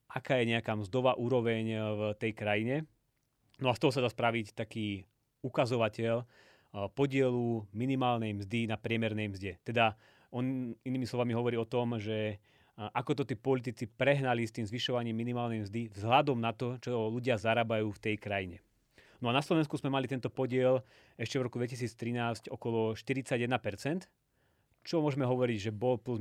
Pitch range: 110-125 Hz